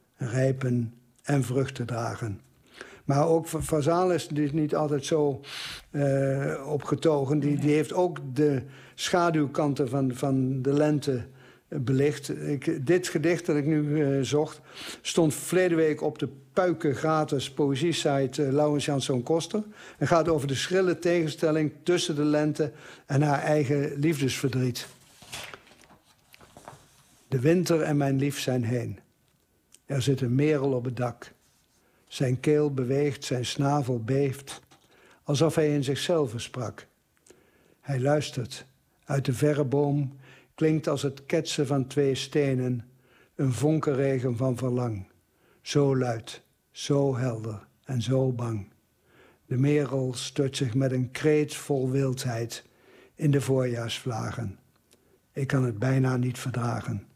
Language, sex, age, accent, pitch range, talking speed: Dutch, male, 60-79, Dutch, 130-150 Hz, 130 wpm